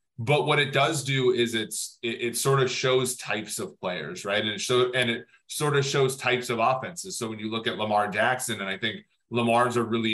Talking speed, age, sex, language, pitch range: 235 wpm, 30-49, male, English, 110-130 Hz